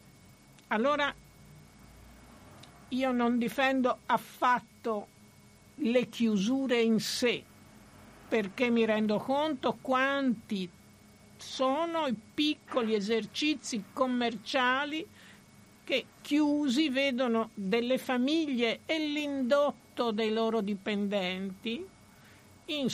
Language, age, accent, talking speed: Italian, 60-79, native, 80 wpm